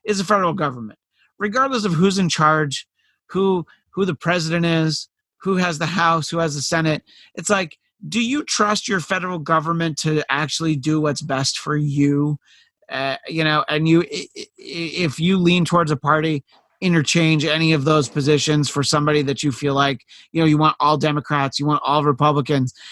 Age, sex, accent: 30-49, male, American